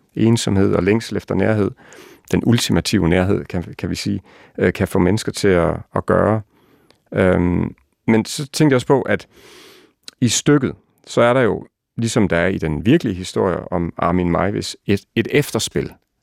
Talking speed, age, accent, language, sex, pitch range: 170 wpm, 40-59, native, Danish, male, 90-115 Hz